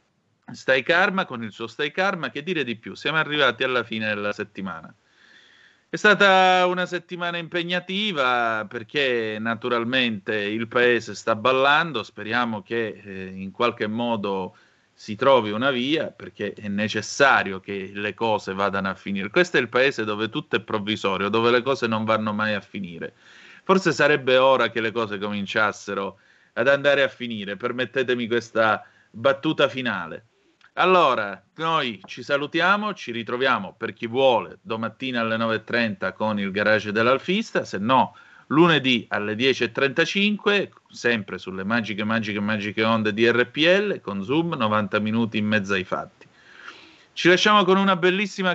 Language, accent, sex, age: Italian, native, male, 30-49